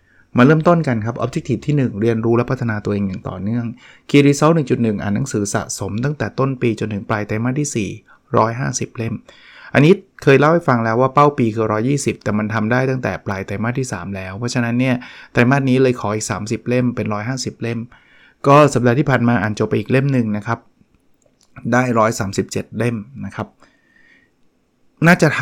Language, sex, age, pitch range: Thai, male, 20-39, 110-130 Hz